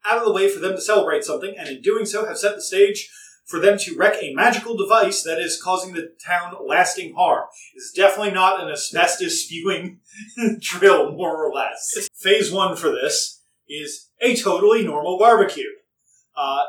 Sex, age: male, 30-49